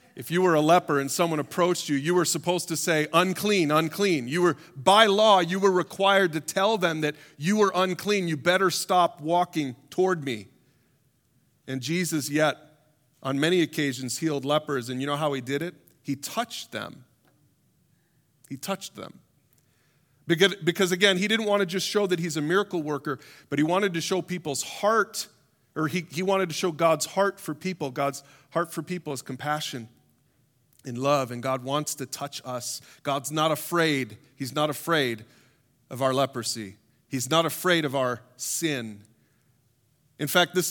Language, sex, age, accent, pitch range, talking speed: English, male, 40-59, American, 135-175 Hz, 175 wpm